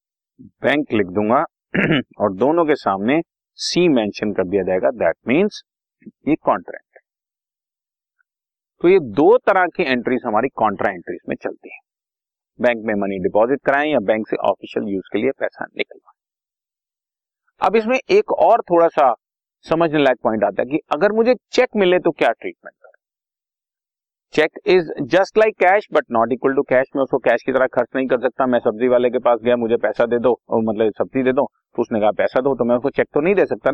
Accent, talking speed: native, 175 wpm